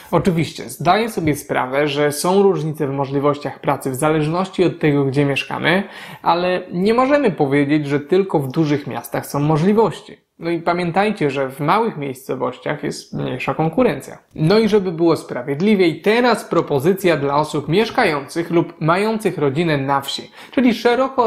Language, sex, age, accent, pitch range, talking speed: Polish, male, 20-39, native, 145-195 Hz, 150 wpm